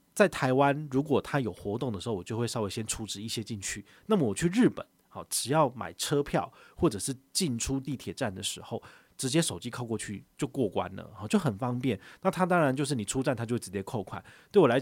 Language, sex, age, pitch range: Chinese, male, 30-49, 105-135 Hz